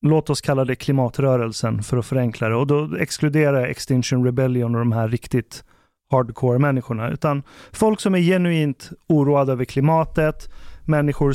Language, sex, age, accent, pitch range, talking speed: Swedish, male, 30-49, native, 130-160 Hz, 155 wpm